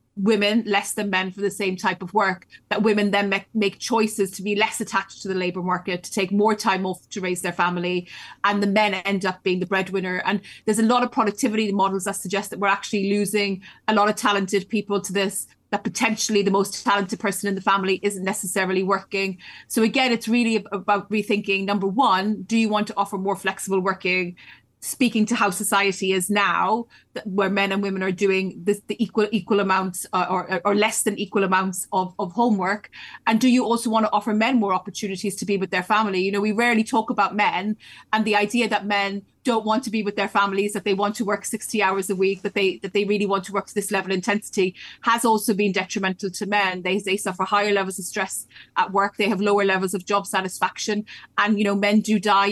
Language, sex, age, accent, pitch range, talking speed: English, female, 30-49, Irish, 195-215 Hz, 230 wpm